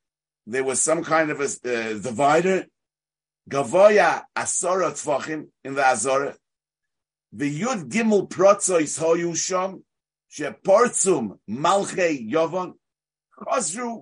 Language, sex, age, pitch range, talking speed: English, male, 50-69, 150-210 Hz, 105 wpm